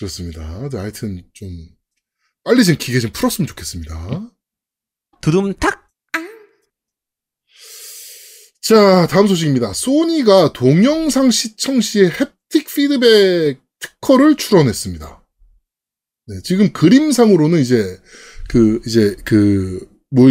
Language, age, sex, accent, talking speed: English, 20-39, male, Korean, 85 wpm